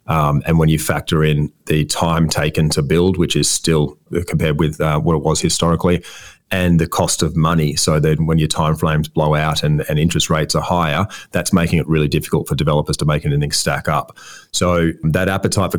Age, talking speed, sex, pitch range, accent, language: 30-49, 210 wpm, male, 75-85 Hz, Australian, English